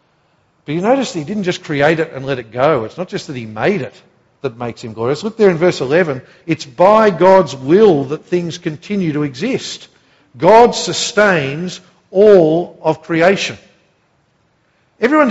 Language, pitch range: English, 135-185 Hz